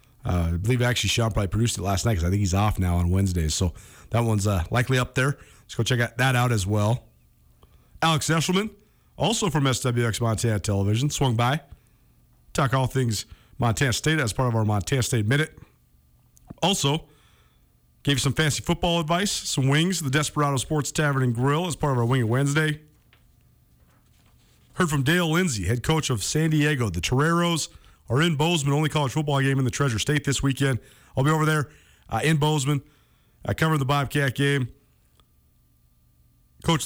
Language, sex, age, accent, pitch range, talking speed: English, male, 40-59, American, 115-150 Hz, 180 wpm